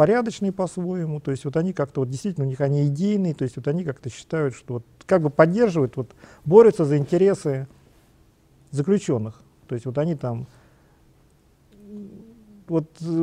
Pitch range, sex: 135-180 Hz, male